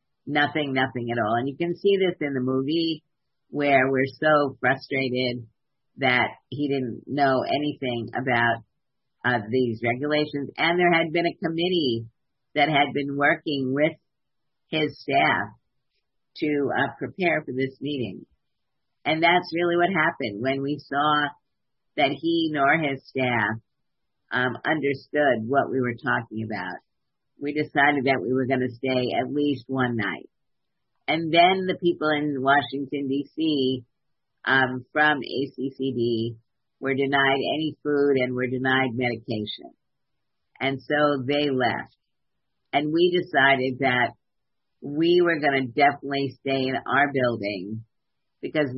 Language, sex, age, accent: English, female, 50-69, American